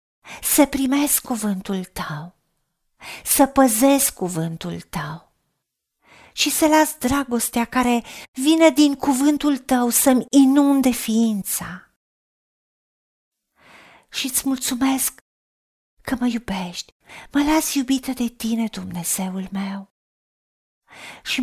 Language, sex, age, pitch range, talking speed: Romanian, female, 40-59, 195-280 Hz, 95 wpm